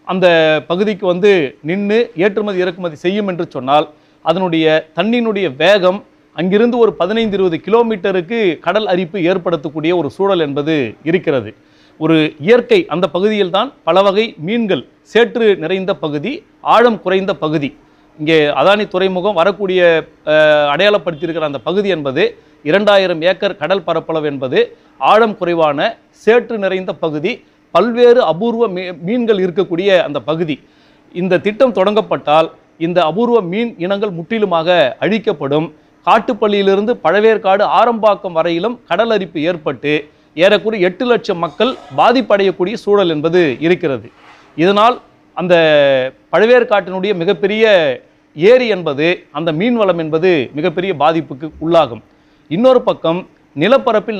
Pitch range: 160-210 Hz